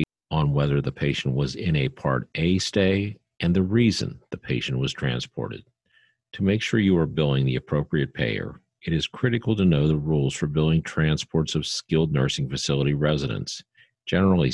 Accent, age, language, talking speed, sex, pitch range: American, 50-69, English, 175 wpm, male, 70-90 Hz